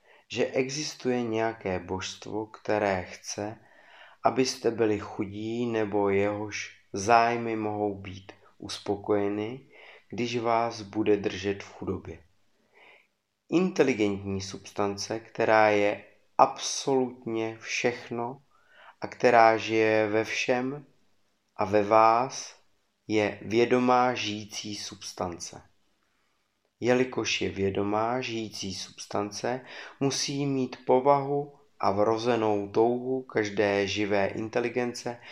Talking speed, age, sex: 90 wpm, 30-49, male